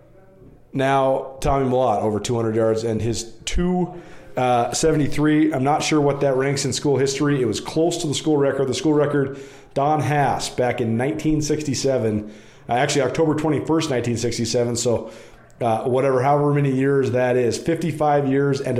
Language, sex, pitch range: English, male, 120-145 Hz